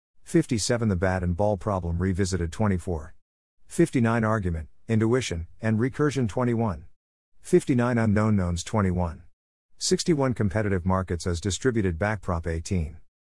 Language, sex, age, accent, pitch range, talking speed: English, male, 50-69, American, 90-120 Hz, 115 wpm